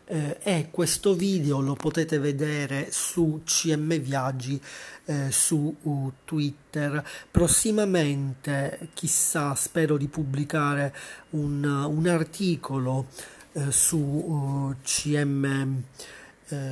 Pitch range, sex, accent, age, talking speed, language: 135-160 Hz, male, native, 40-59, 95 wpm, Italian